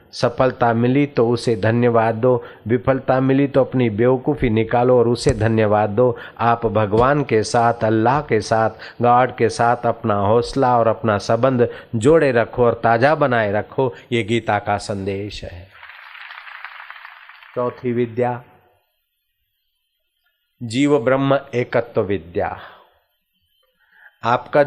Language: Hindi